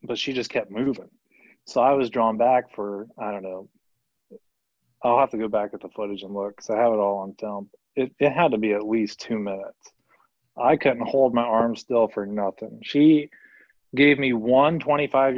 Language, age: English, 20-39